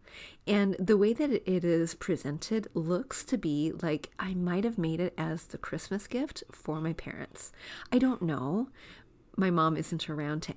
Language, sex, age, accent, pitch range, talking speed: English, female, 40-59, American, 165-205 Hz, 175 wpm